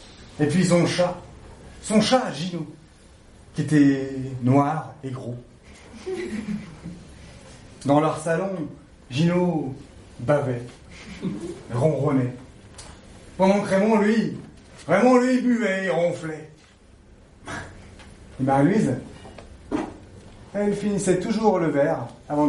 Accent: French